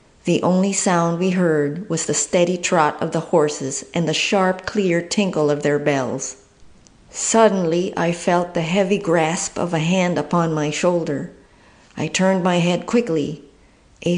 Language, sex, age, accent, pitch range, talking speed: English, female, 50-69, American, 150-180 Hz, 160 wpm